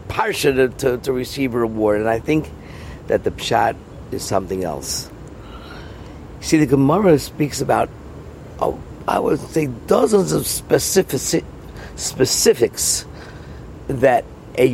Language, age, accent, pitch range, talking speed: English, 50-69, American, 105-150 Hz, 125 wpm